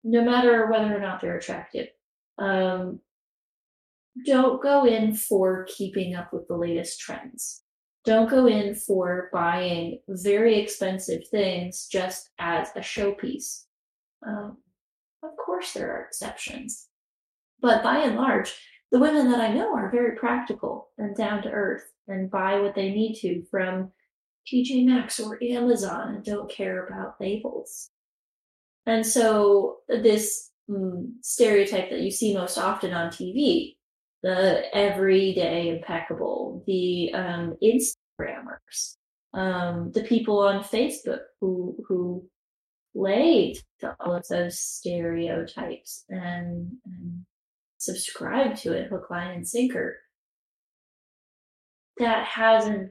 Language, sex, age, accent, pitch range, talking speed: English, female, 20-39, American, 185-235 Hz, 120 wpm